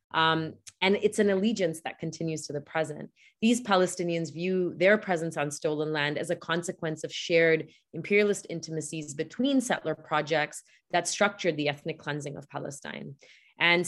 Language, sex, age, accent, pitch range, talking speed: English, female, 30-49, Canadian, 155-190 Hz, 155 wpm